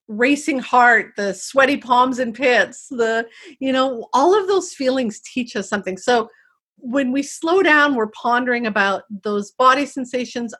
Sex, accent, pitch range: female, American, 215-275 Hz